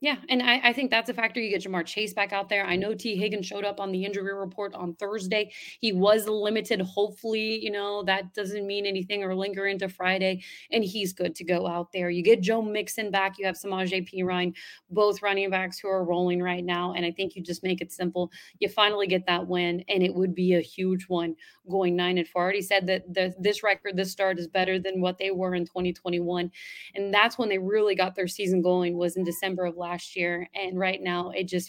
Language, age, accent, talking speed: English, 30-49, American, 240 wpm